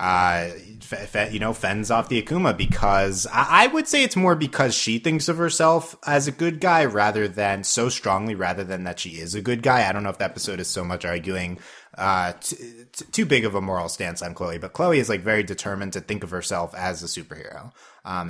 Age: 30-49